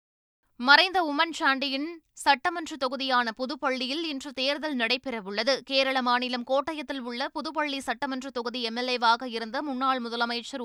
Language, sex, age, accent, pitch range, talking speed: Tamil, female, 20-39, native, 245-290 Hz, 105 wpm